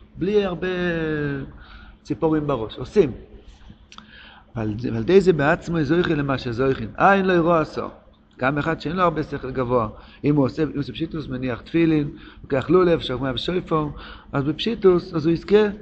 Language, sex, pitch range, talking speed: Hebrew, male, 120-160 Hz, 150 wpm